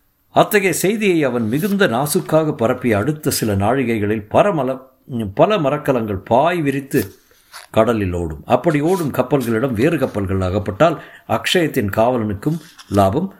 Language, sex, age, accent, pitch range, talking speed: Tamil, male, 50-69, native, 100-140 Hz, 115 wpm